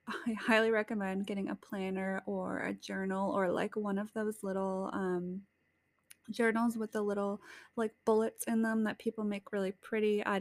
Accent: American